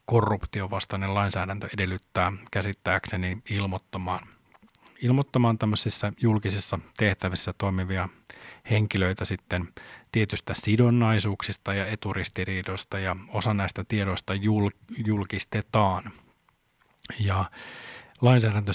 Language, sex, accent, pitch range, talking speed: Finnish, male, native, 95-110 Hz, 75 wpm